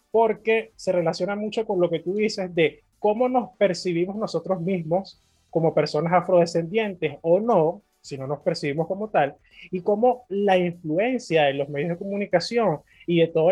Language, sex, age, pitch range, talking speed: Spanish, male, 20-39, 150-200 Hz, 170 wpm